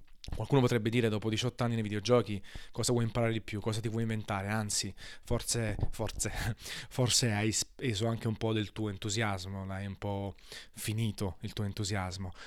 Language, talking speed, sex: Italian, 175 wpm, male